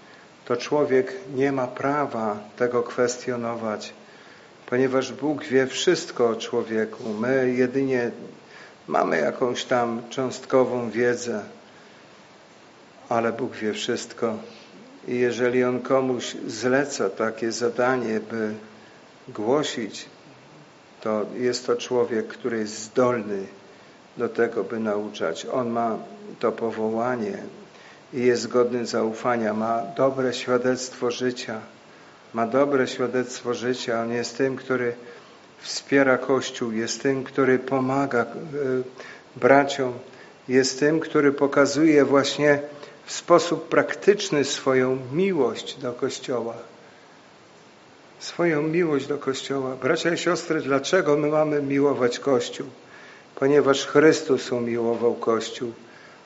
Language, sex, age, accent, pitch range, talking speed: Polish, male, 50-69, native, 120-140 Hz, 105 wpm